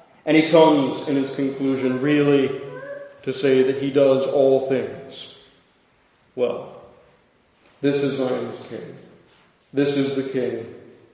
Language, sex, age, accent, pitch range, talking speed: English, male, 40-59, American, 135-150 Hz, 125 wpm